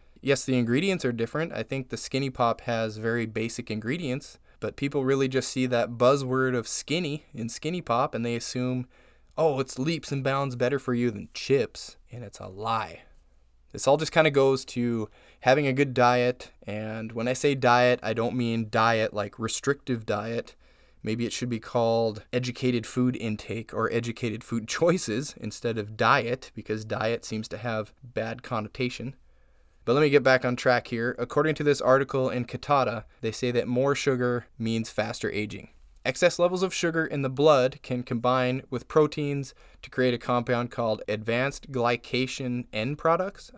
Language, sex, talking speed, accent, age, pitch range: English, male, 180 wpm, American, 20-39, 115-135 Hz